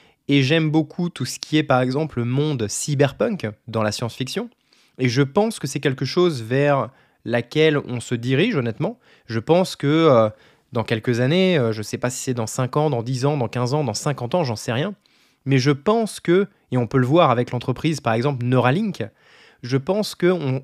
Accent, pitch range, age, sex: French, 125-165 Hz, 20-39, male